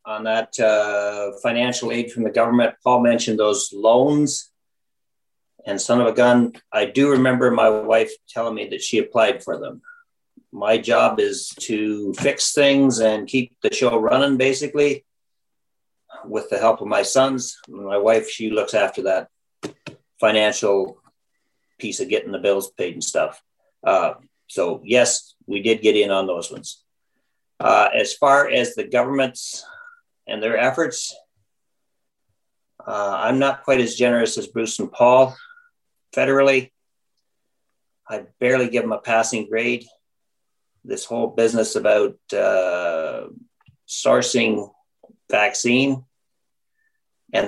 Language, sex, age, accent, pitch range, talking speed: English, male, 50-69, American, 110-140 Hz, 135 wpm